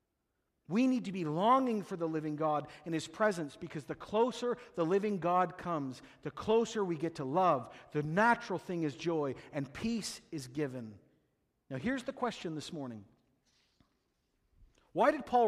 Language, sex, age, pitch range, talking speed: English, male, 50-69, 155-220 Hz, 165 wpm